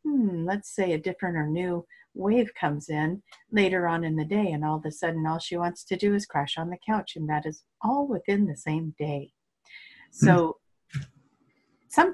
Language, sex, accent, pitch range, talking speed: English, female, American, 145-185 Hz, 200 wpm